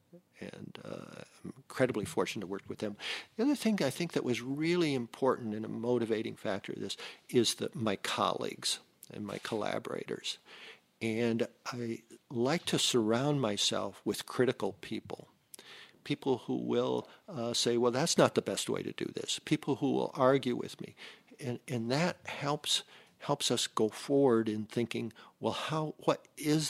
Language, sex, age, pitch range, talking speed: English, male, 50-69, 115-150 Hz, 165 wpm